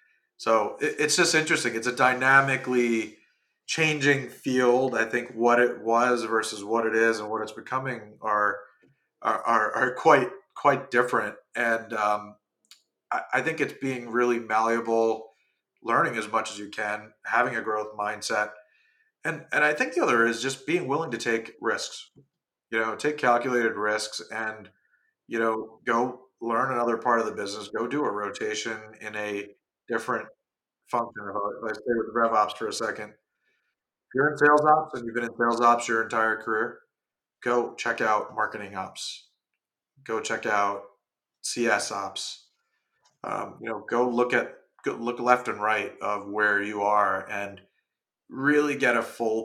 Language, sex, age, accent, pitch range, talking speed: English, male, 30-49, American, 105-125 Hz, 160 wpm